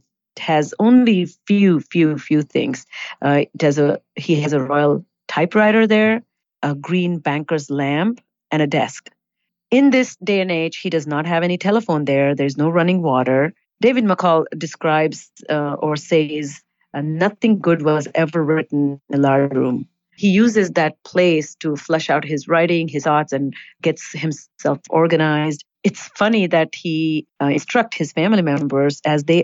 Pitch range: 145-180 Hz